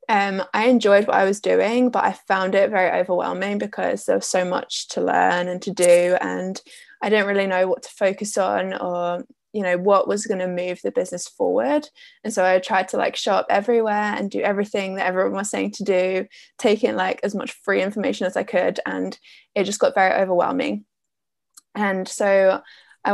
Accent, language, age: British, English, 10-29